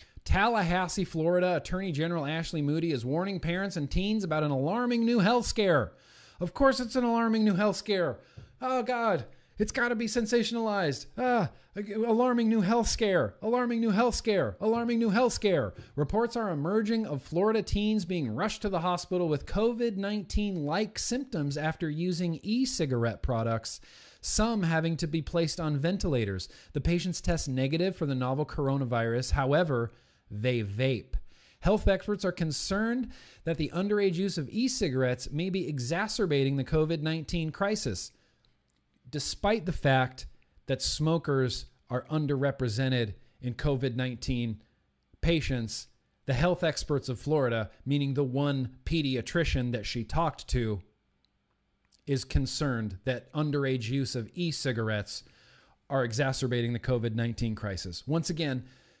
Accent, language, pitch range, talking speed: American, English, 130-205 Hz, 135 wpm